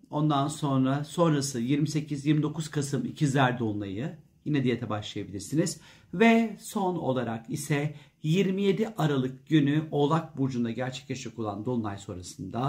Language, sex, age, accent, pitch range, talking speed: Turkish, male, 50-69, native, 130-170 Hz, 115 wpm